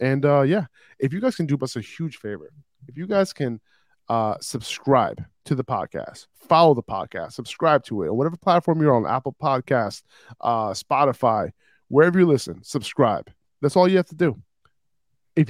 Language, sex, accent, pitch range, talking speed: English, male, American, 125-160 Hz, 180 wpm